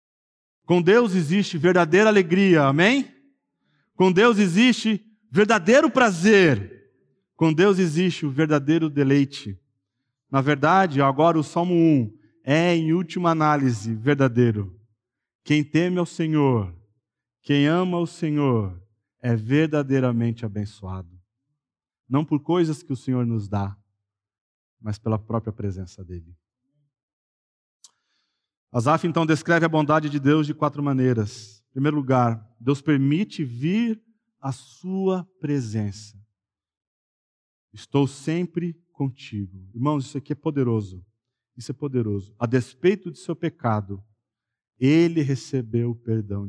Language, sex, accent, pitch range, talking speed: Portuguese, male, Brazilian, 110-160 Hz, 115 wpm